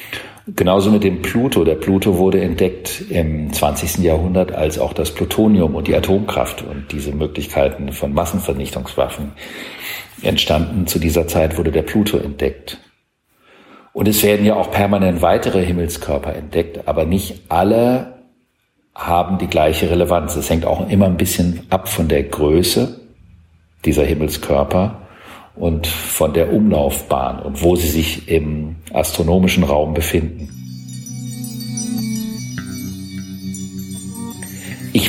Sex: male